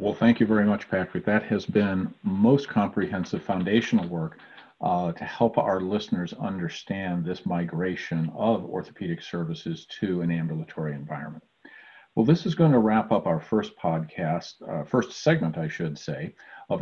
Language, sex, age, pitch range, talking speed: English, male, 50-69, 85-115 Hz, 160 wpm